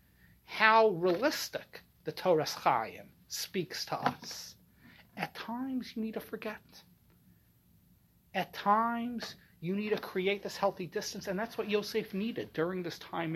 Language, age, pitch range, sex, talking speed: English, 30-49, 165-220 Hz, male, 140 wpm